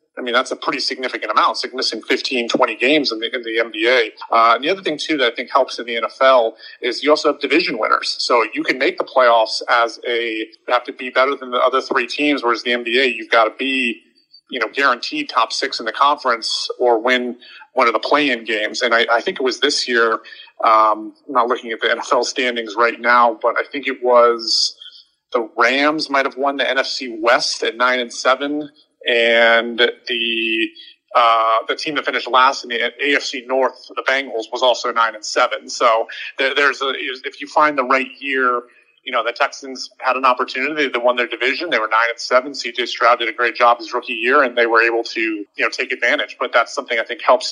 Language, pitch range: English, 120-140 Hz